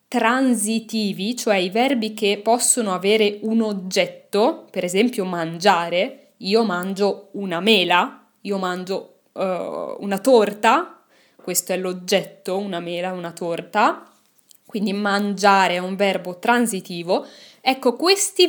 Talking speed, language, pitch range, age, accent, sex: 115 wpm, Italian, 190-245 Hz, 20-39, native, female